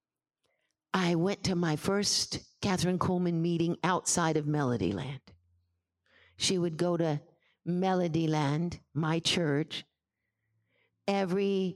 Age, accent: 50-69, American